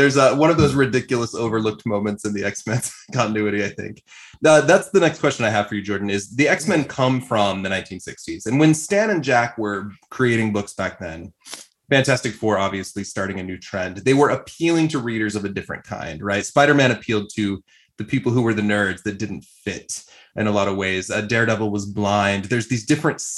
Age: 20-39